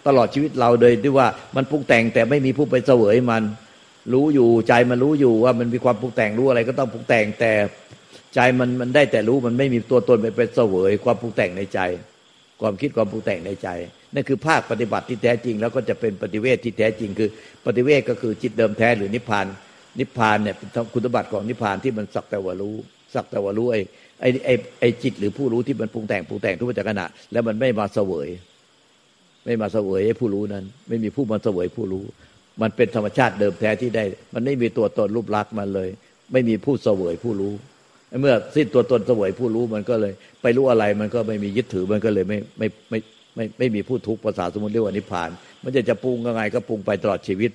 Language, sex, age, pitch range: Thai, male, 60-79, 105-125 Hz